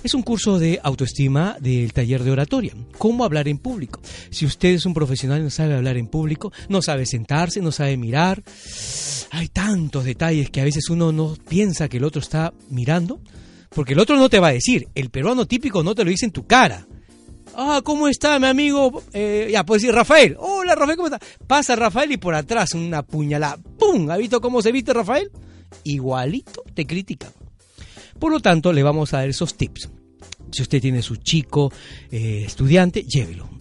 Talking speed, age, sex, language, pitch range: 200 wpm, 40-59, male, Spanish, 130-195 Hz